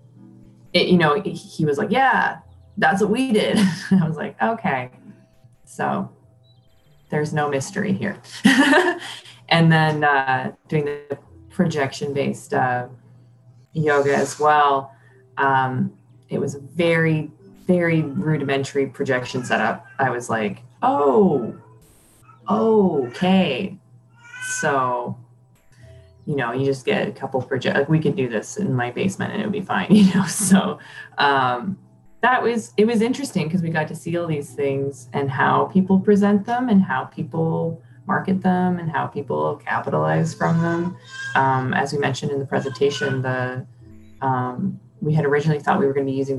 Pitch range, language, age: 130-175 Hz, English, 20-39